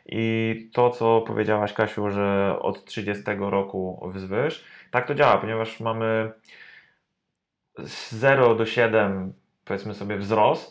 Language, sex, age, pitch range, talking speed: Polish, male, 20-39, 95-110 Hz, 125 wpm